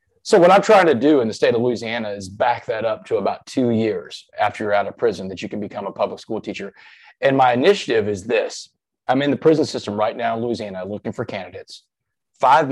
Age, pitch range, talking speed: 30-49, 105-145 Hz, 235 wpm